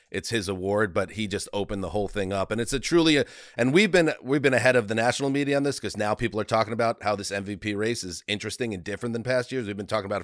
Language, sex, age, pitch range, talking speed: English, male, 40-59, 100-120 Hz, 285 wpm